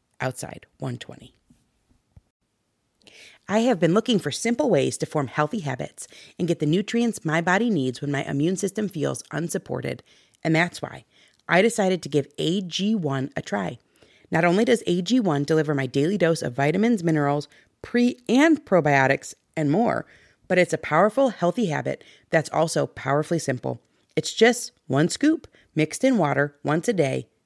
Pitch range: 150-215 Hz